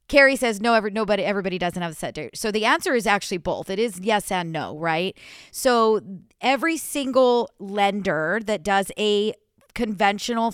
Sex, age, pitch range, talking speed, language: female, 40-59, 180-220 Hz, 170 wpm, English